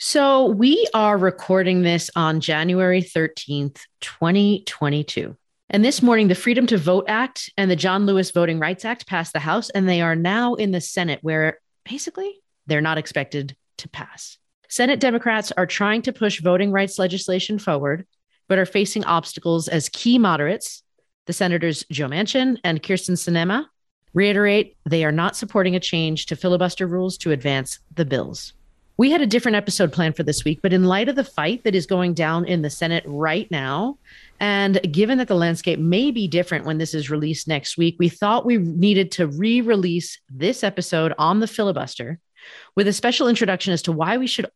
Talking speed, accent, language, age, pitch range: 185 wpm, American, English, 40-59, 165-210 Hz